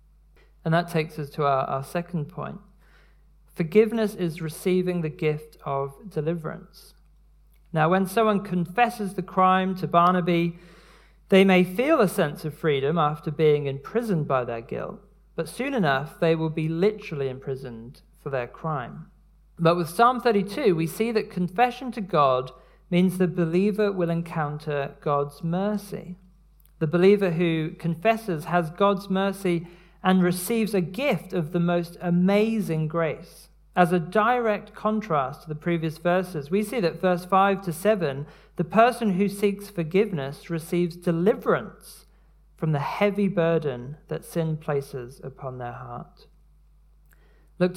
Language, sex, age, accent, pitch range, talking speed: English, male, 40-59, British, 155-190 Hz, 145 wpm